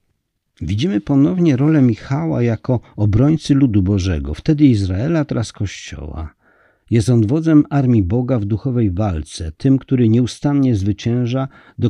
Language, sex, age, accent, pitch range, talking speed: Polish, male, 50-69, native, 100-135 Hz, 125 wpm